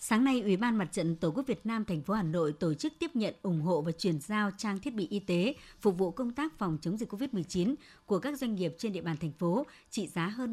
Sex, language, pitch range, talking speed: male, Vietnamese, 175-230 Hz, 275 wpm